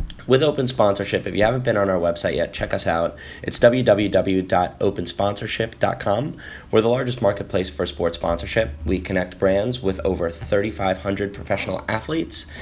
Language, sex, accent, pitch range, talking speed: English, male, American, 95-115 Hz, 150 wpm